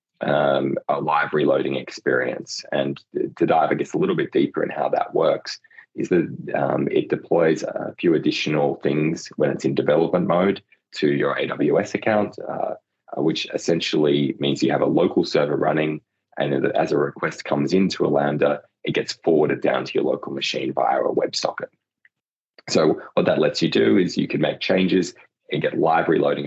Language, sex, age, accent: English, male, 20-39, Australian